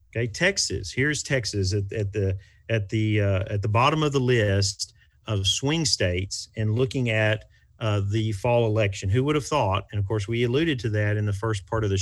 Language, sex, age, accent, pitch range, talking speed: English, male, 40-59, American, 100-120 Hz, 215 wpm